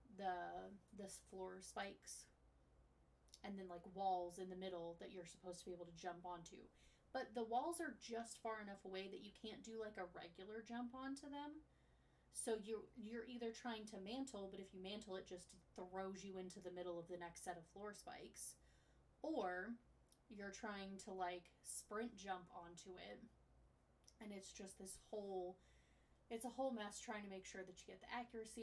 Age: 20-39